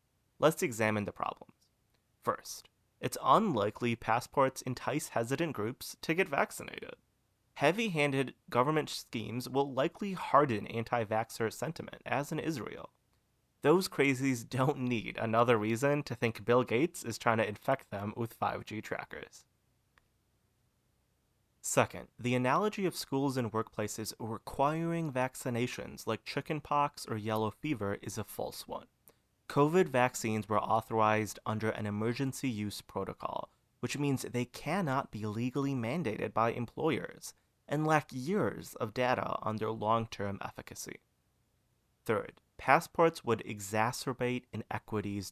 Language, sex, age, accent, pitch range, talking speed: English, male, 30-49, American, 110-135 Hz, 125 wpm